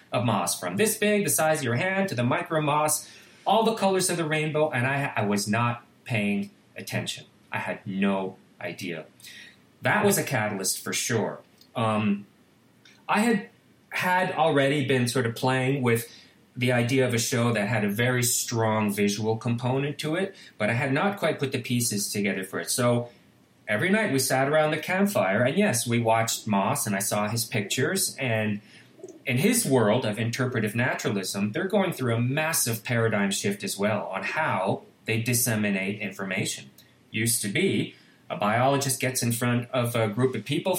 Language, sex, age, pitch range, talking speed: English, male, 30-49, 110-155 Hz, 180 wpm